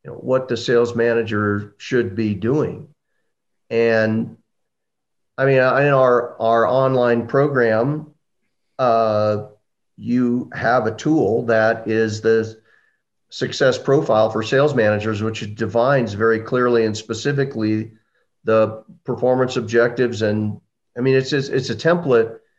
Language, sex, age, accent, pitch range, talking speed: English, male, 40-59, American, 115-145 Hz, 125 wpm